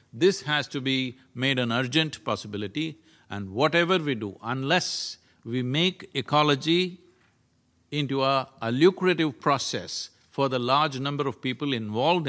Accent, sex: Indian, male